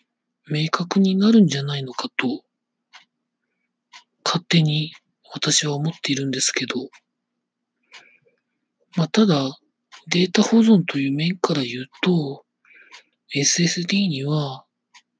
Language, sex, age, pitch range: Japanese, male, 40-59, 140-185 Hz